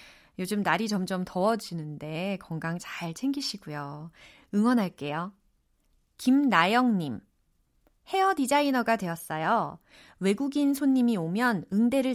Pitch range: 175-245 Hz